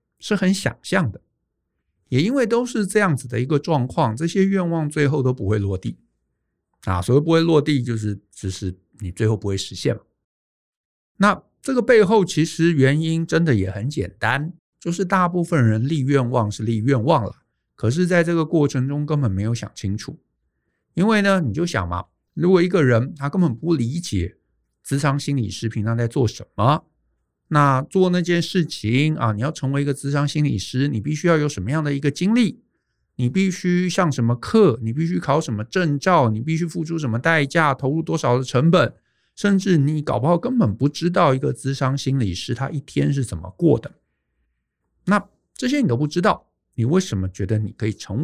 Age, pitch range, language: 60-79, 110-170 Hz, Chinese